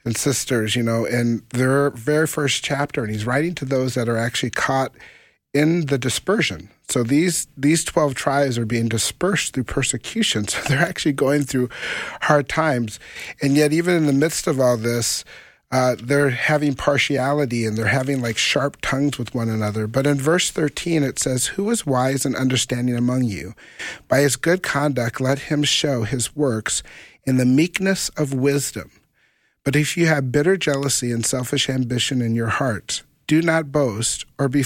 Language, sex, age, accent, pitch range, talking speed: English, male, 40-59, American, 120-150 Hz, 180 wpm